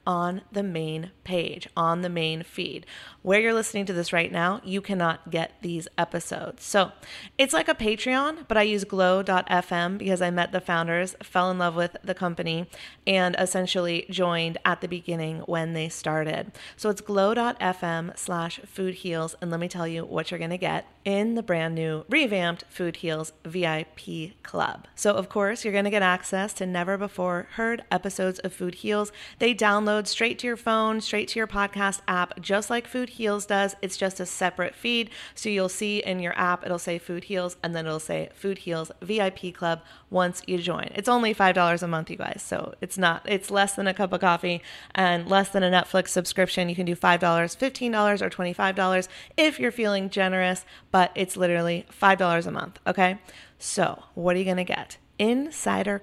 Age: 30-49